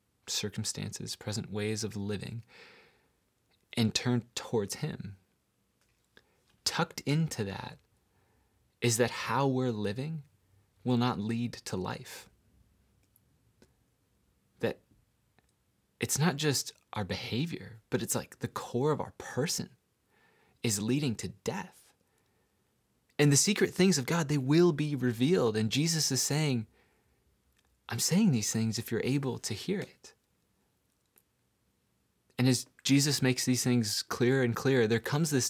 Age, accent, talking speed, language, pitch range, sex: 20-39, American, 130 wpm, English, 105-130 Hz, male